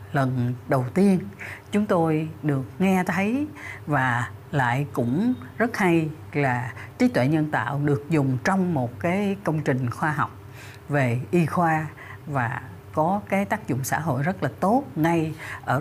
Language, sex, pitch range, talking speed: Vietnamese, female, 125-170 Hz, 160 wpm